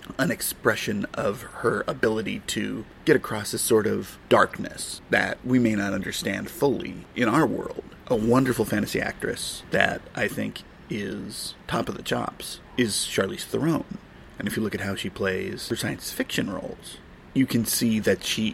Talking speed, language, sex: 170 wpm, English, male